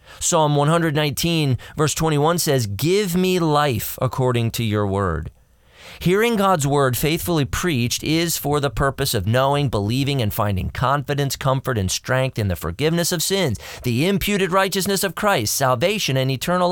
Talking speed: 155 wpm